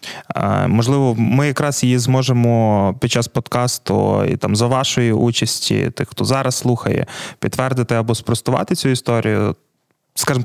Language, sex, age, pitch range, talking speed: Ukrainian, male, 20-39, 115-135 Hz, 130 wpm